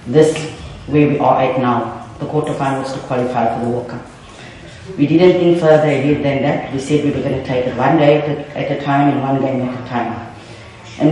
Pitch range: 130-150 Hz